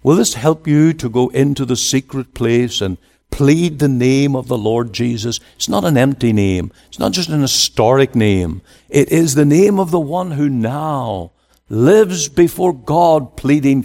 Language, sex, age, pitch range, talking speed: English, male, 60-79, 105-150 Hz, 180 wpm